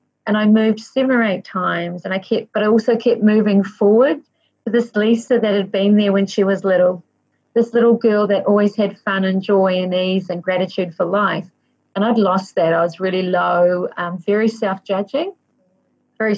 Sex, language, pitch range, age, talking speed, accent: female, English, 180-220 Hz, 40-59, 200 wpm, Australian